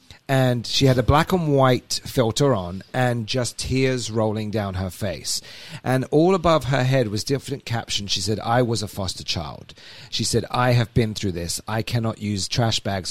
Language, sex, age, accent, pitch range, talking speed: English, male, 40-59, British, 95-125 Hz, 195 wpm